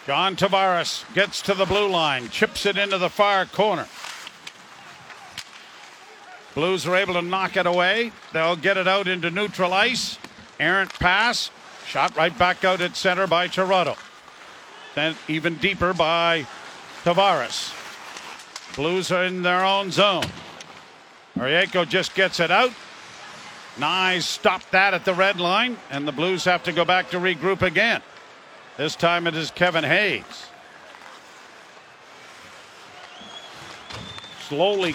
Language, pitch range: English, 175-200 Hz